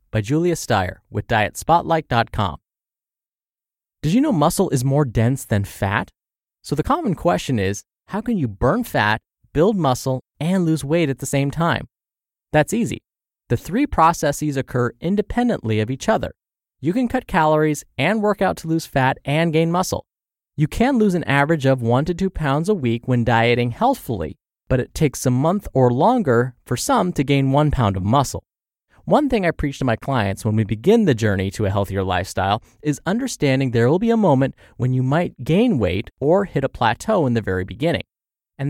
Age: 20-39